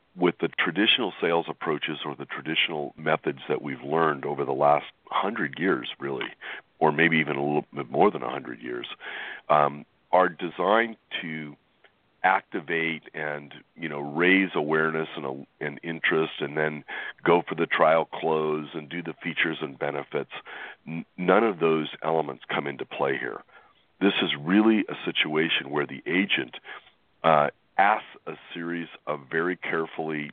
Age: 40-59